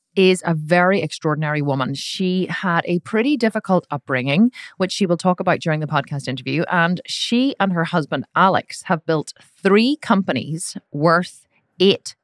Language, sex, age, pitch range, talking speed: English, female, 30-49, 145-190 Hz, 155 wpm